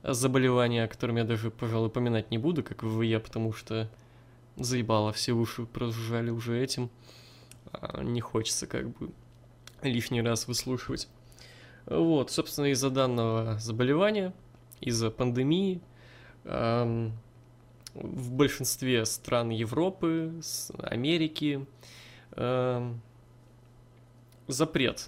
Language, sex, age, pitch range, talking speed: Russian, male, 20-39, 115-135 Hz, 100 wpm